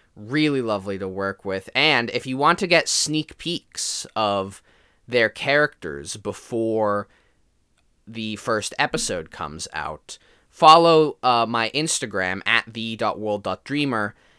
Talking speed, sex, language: 115 wpm, male, English